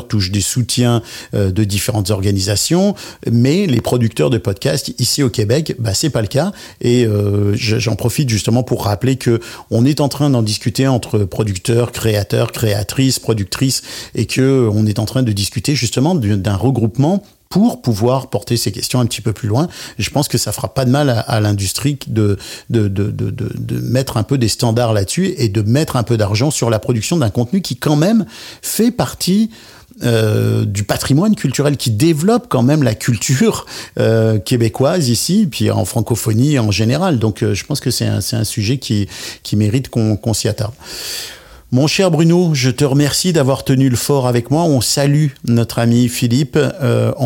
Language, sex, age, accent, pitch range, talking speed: French, male, 50-69, French, 110-135 Hz, 190 wpm